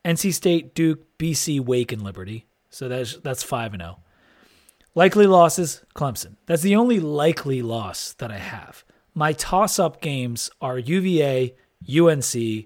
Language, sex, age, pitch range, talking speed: English, male, 30-49, 125-175 Hz, 140 wpm